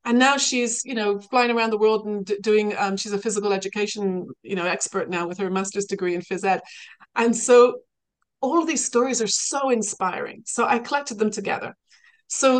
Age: 30-49